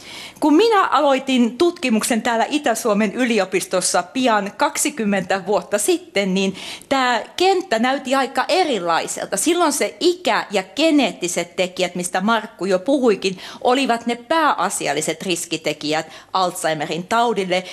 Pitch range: 185-270 Hz